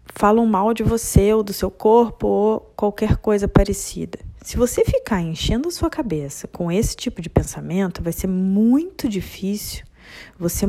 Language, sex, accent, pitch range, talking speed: Portuguese, female, Brazilian, 155-245 Hz, 165 wpm